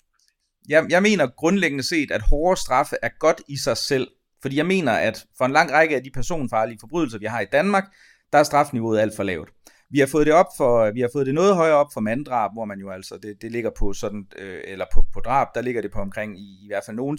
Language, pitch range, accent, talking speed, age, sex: Danish, 110-145 Hz, native, 250 wpm, 30-49, male